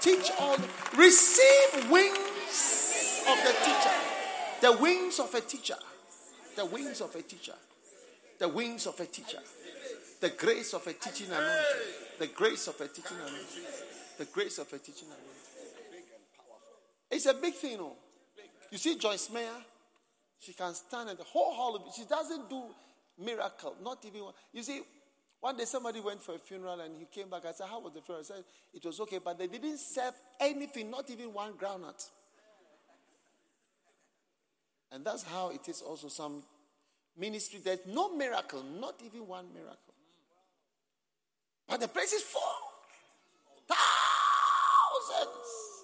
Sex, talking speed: male, 160 wpm